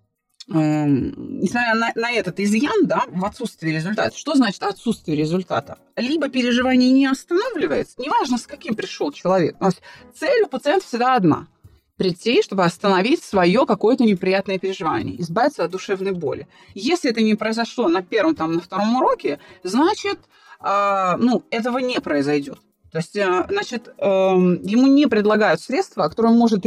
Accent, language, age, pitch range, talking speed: native, Russian, 30-49, 190-255 Hz, 155 wpm